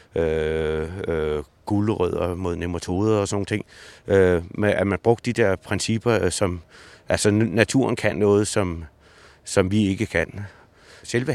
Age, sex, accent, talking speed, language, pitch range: 60-79, male, native, 145 wpm, Danish, 95-110 Hz